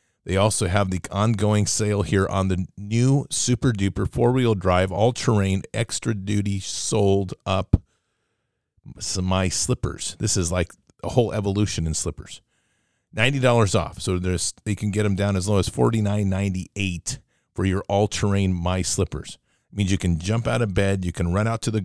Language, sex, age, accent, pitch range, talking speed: English, male, 40-59, American, 90-110 Hz, 155 wpm